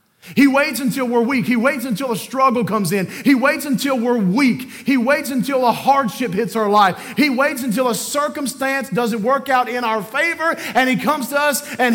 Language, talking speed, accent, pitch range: English, 210 wpm, American, 185-265 Hz